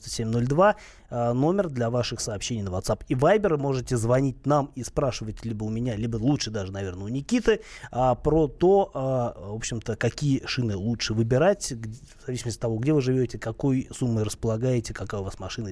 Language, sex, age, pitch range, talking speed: Russian, male, 20-39, 115-150 Hz, 170 wpm